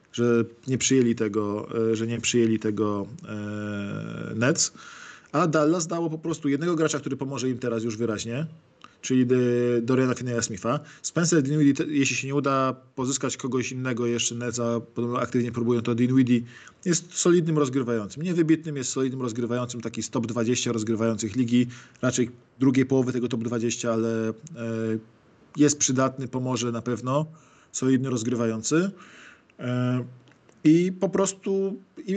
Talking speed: 140 wpm